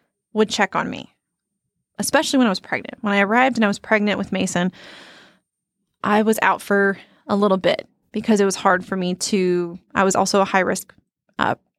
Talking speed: 200 wpm